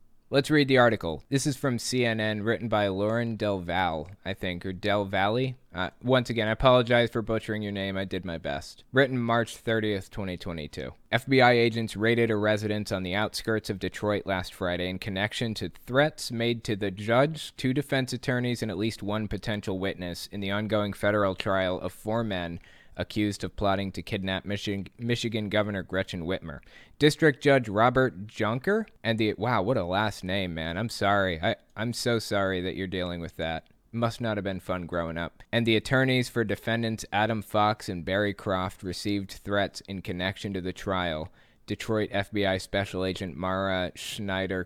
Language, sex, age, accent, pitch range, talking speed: English, male, 20-39, American, 95-115 Hz, 180 wpm